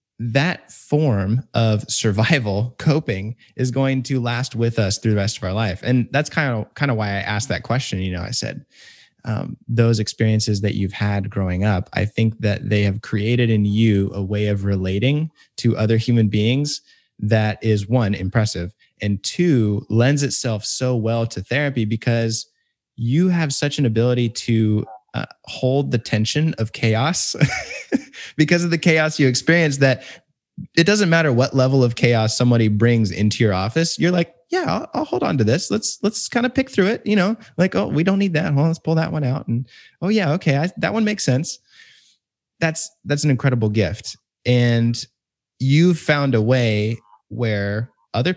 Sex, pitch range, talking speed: male, 110-150 Hz, 185 wpm